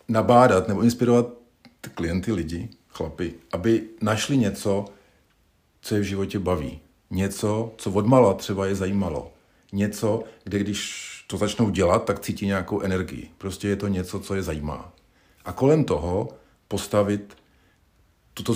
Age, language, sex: 50-69, Czech, male